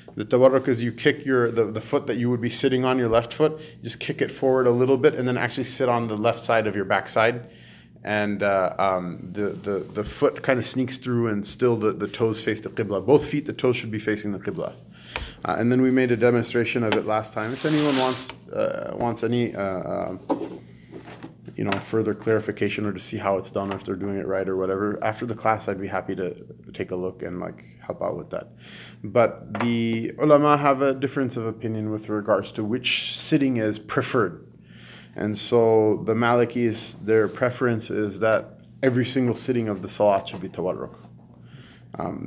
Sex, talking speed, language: male, 210 wpm, English